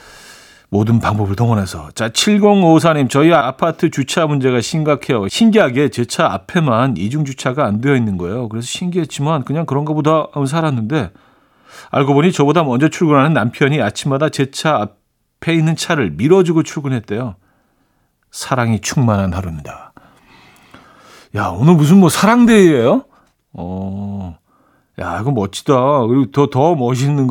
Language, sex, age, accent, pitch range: Korean, male, 40-59, native, 110-160 Hz